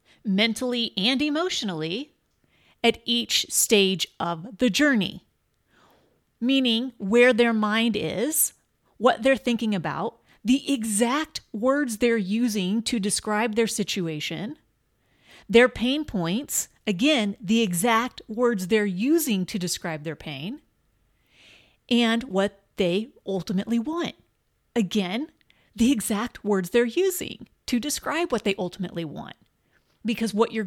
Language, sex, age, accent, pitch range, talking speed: English, female, 30-49, American, 205-270 Hz, 115 wpm